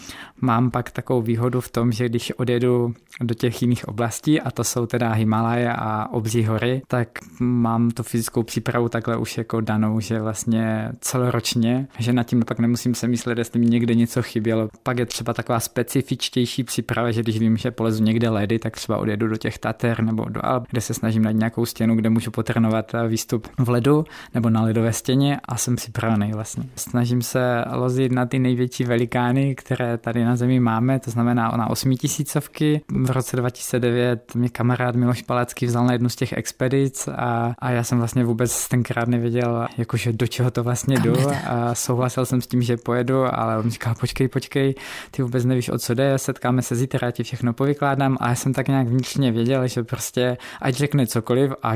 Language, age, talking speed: Czech, 20-39, 195 wpm